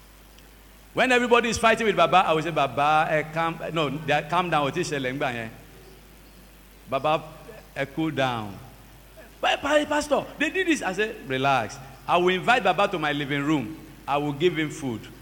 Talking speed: 155 wpm